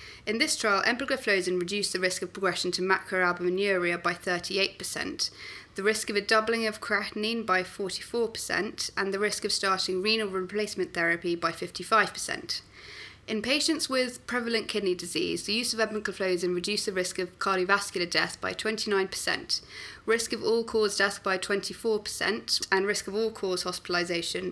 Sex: female